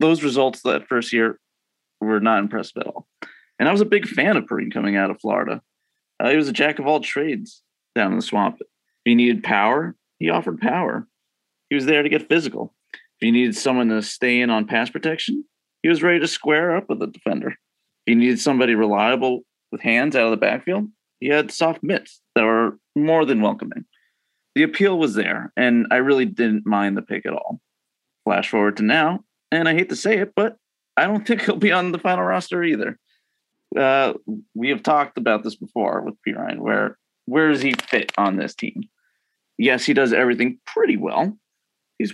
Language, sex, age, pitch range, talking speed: English, male, 30-49, 115-170 Hz, 205 wpm